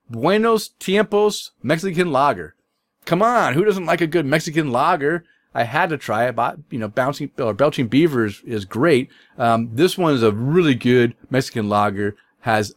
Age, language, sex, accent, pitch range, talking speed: 40-59, English, male, American, 115-150 Hz, 180 wpm